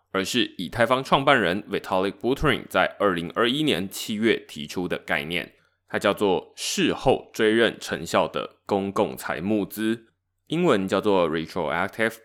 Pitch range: 90-135 Hz